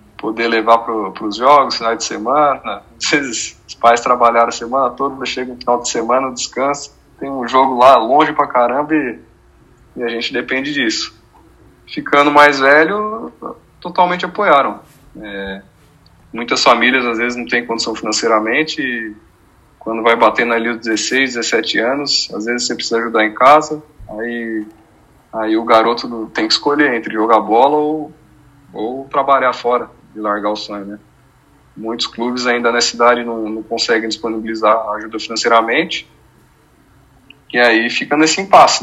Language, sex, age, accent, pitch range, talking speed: Portuguese, male, 20-39, Brazilian, 115-140 Hz, 155 wpm